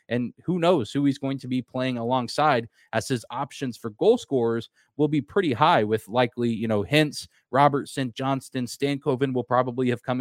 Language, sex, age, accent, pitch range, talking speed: English, male, 20-39, American, 120-150 Hz, 190 wpm